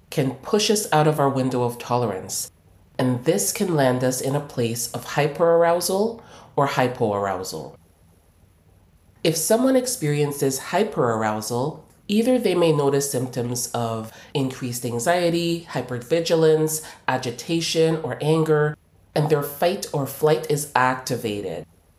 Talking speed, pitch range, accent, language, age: 120 wpm, 120-160 Hz, American, English, 30-49